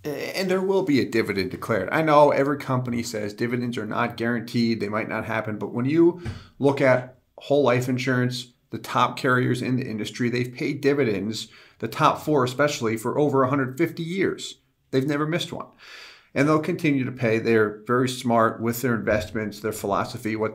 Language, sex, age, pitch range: English, male, 40-59, 115-140 Hz